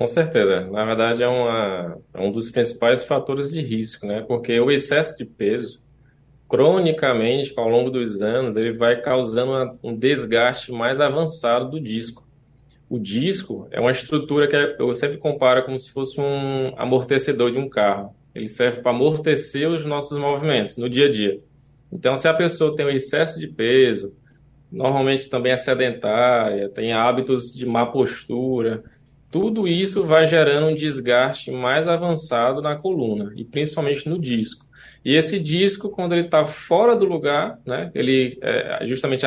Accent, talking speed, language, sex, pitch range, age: Brazilian, 165 wpm, Portuguese, male, 125-155 Hz, 20-39